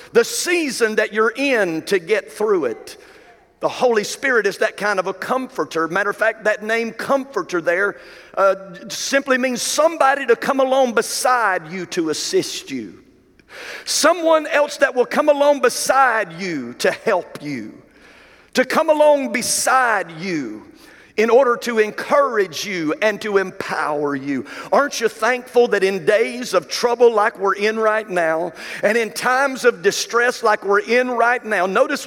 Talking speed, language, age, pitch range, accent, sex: 160 wpm, English, 50-69, 200-260 Hz, American, male